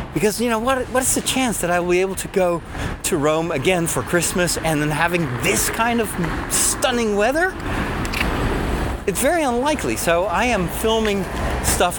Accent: American